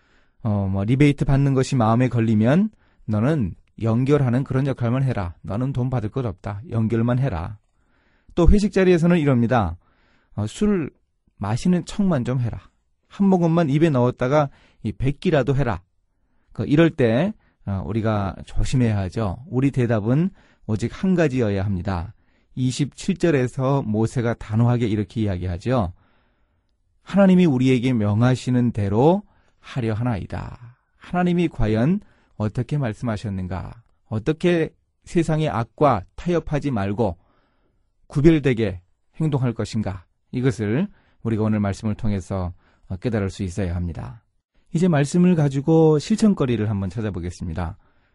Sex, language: male, Korean